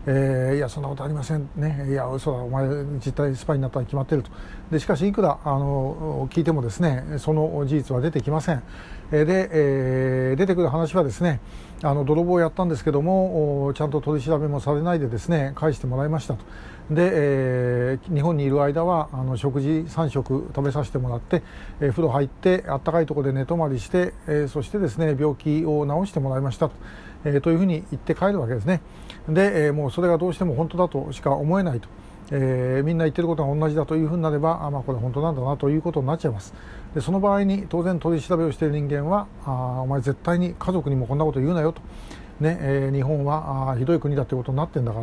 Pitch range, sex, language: 135-160 Hz, male, Japanese